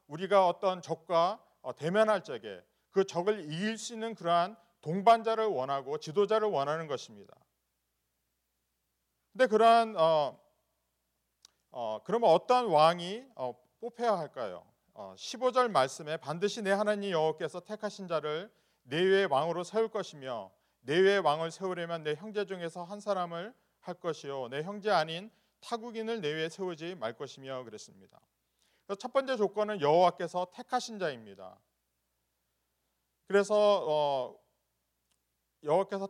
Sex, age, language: male, 40-59, Korean